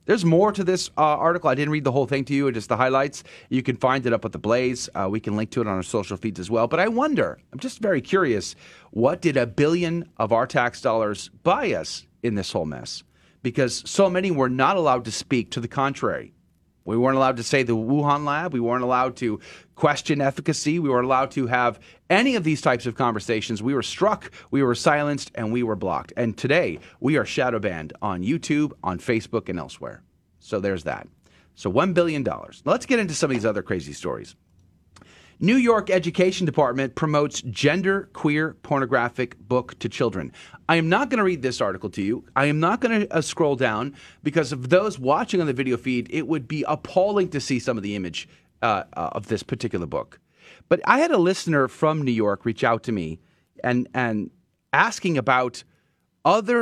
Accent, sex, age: American, male, 30-49